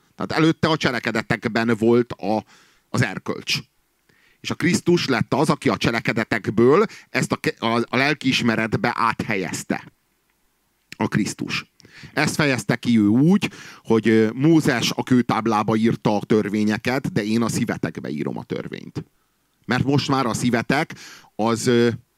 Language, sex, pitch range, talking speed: Hungarian, male, 110-135 Hz, 135 wpm